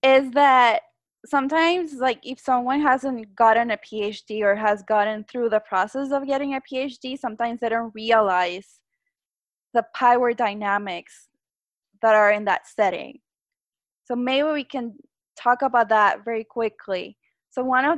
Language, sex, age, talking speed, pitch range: Spanish, female, 10-29, 145 wpm, 210-260 Hz